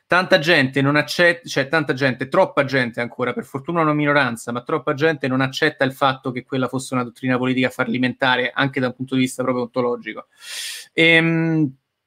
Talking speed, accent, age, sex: 170 wpm, native, 30-49, male